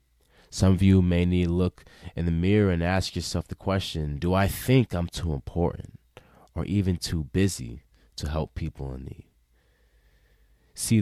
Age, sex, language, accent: 20-39, male, English, American